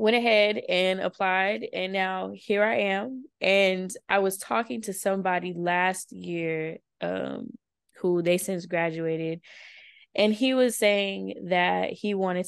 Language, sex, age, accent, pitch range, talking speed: English, female, 20-39, American, 180-220 Hz, 140 wpm